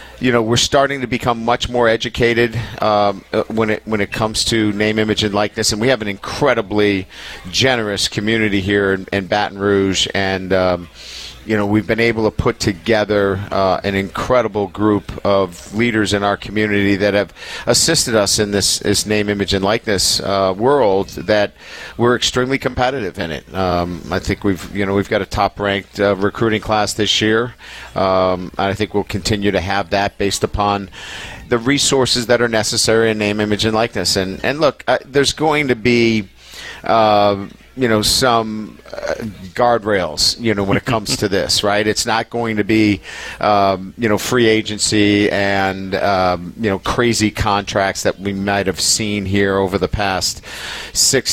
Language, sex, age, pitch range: English, male, 50-69, 95-110 Hz